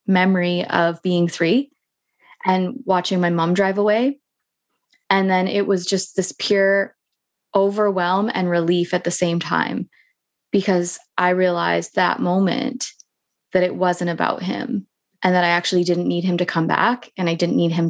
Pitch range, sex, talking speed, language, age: 175-195 Hz, female, 165 wpm, English, 20-39